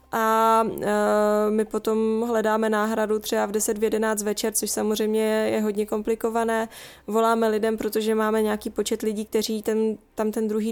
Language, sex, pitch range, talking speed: Czech, female, 210-225 Hz, 155 wpm